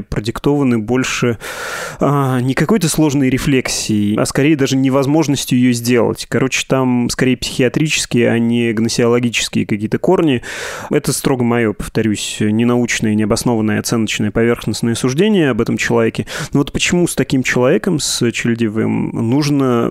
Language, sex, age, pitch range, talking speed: Russian, male, 20-39, 115-135 Hz, 125 wpm